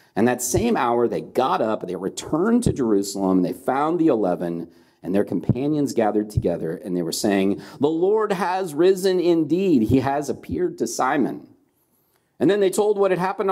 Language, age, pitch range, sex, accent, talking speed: English, 40-59, 120-180 Hz, male, American, 180 wpm